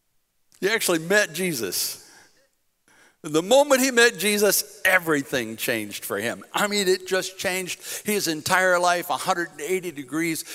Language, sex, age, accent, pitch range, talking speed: English, male, 60-79, American, 125-190 Hz, 130 wpm